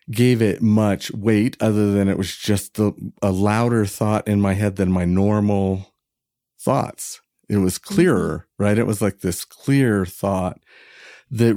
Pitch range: 100-125 Hz